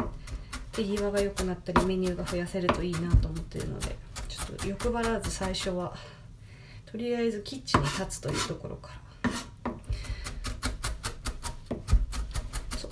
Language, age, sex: Japanese, 20-39, female